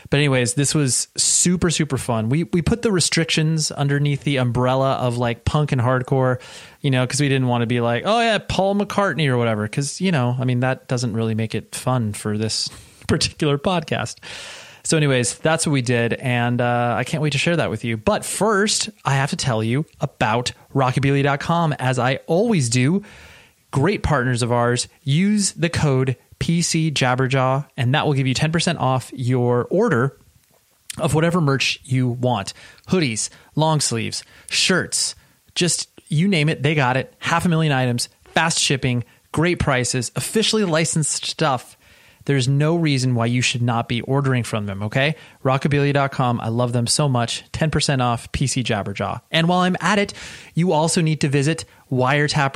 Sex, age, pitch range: male, 30-49, 120-160 Hz